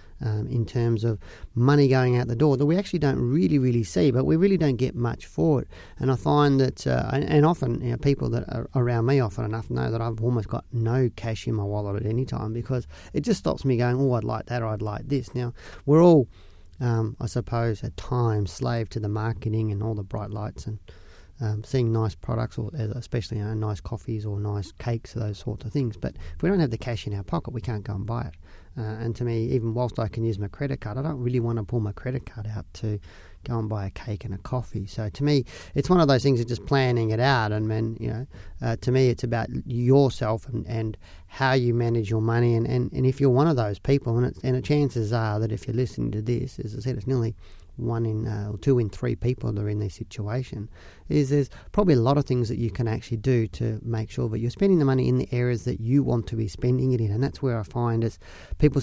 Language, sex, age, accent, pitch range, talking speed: English, male, 40-59, Australian, 110-125 Hz, 265 wpm